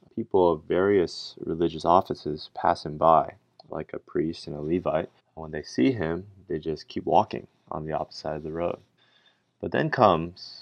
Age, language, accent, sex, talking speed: 30-49, English, American, male, 185 wpm